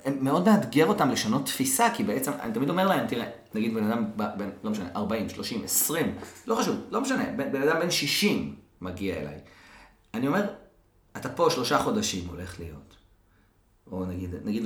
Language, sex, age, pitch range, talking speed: Hebrew, male, 40-59, 90-115 Hz, 175 wpm